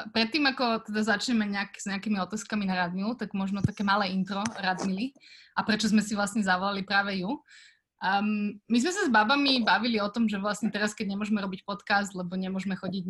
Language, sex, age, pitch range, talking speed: Slovak, female, 20-39, 190-220 Hz, 195 wpm